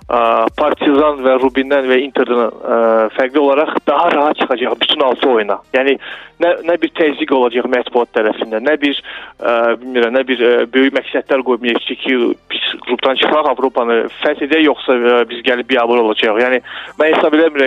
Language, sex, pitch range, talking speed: Russian, male, 125-155 Hz, 130 wpm